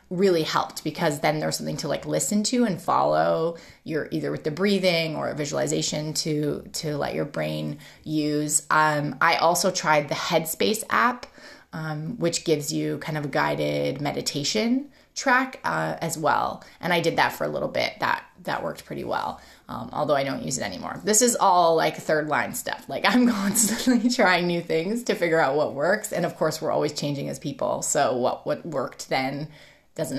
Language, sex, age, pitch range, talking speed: English, female, 20-39, 145-185 Hz, 195 wpm